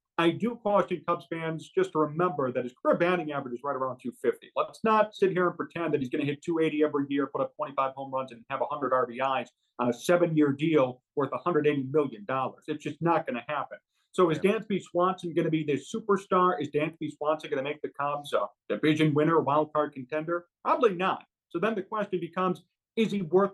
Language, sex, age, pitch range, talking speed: English, male, 40-59, 140-175 Hz, 220 wpm